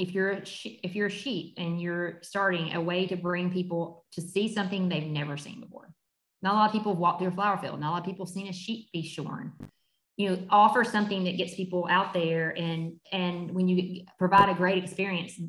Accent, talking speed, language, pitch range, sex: American, 235 wpm, English, 165-195 Hz, female